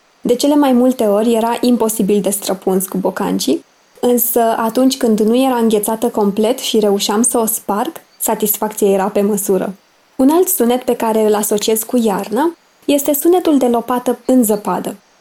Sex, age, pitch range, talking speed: female, 20-39, 210-255 Hz, 165 wpm